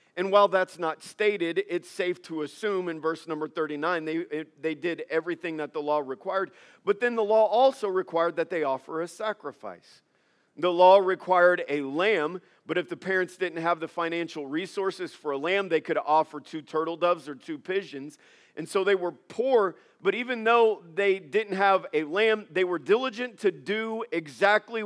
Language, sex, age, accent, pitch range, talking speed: English, male, 40-59, American, 170-215 Hz, 190 wpm